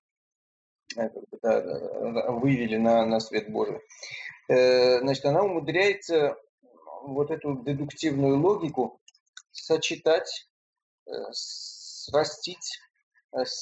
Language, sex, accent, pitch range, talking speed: Russian, male, native, 135-190 Hz, 65 wpm